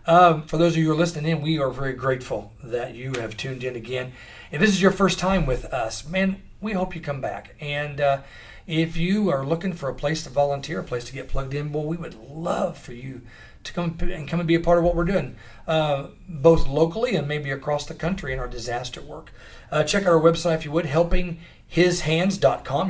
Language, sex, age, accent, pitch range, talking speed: English, male, 40-59, American, 130-170 Hz, 235 wpm